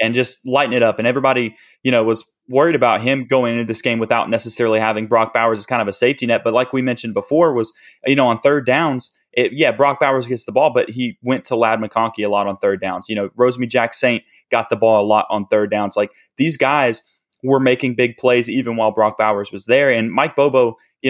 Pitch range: 115-130 Hz